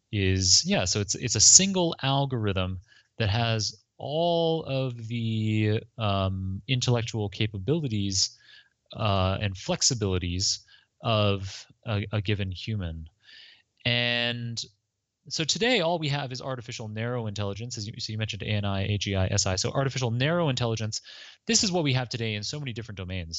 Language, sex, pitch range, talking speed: English, male, 100-120 Hz, 145 wpm